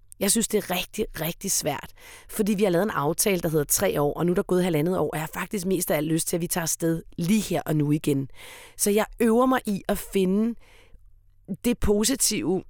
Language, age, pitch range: Danish, 30-49, 170-225 Hz